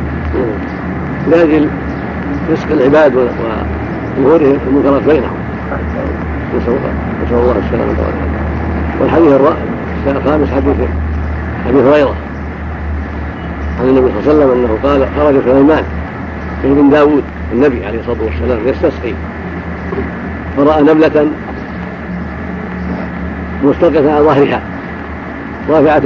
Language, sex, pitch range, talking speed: Arabic, male, 90-145 Hz, 85 wpm